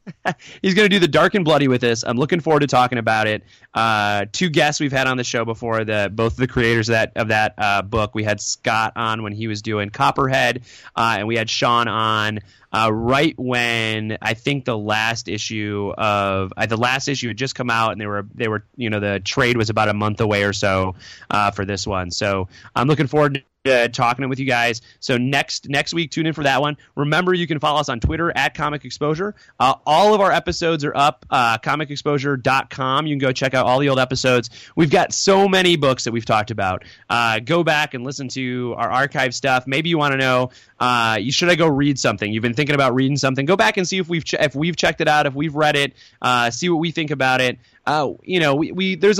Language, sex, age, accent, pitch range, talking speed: English, male, 20-39, American, 110-150 Hz, 245 wpm